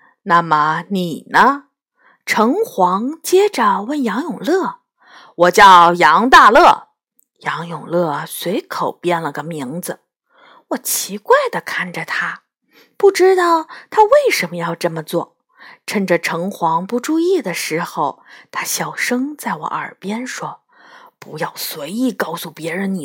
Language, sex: Chinese, female